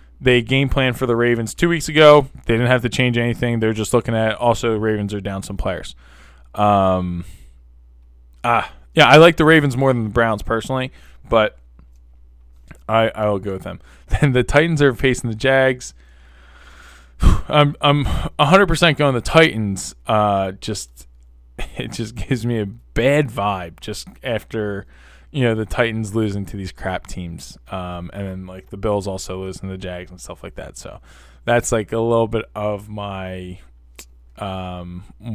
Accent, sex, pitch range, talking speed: American, male, 90-115 Hz, 175 wpm